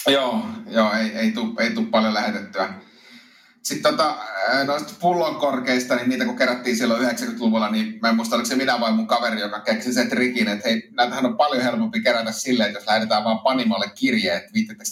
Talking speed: 190 wpm